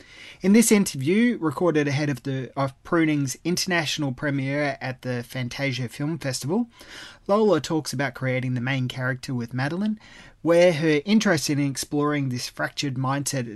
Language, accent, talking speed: English, Australian, 140 wpm